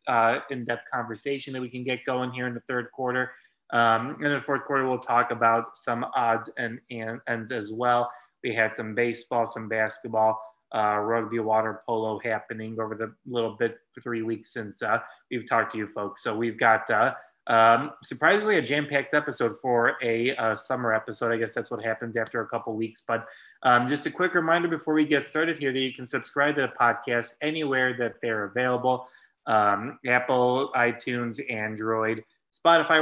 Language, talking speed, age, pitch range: English, 195 wpm, 20-39, 115-135 Hz